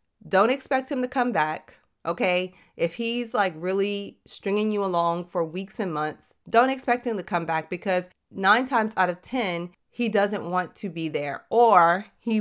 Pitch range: 175-235 Hz